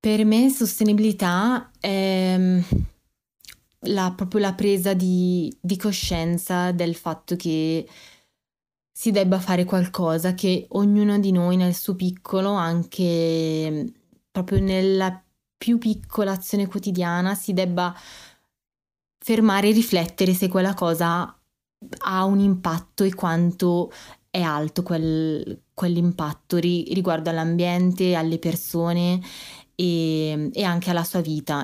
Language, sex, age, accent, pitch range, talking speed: Italian, female, 20-39, native, 170-195 Hz, 105 wpm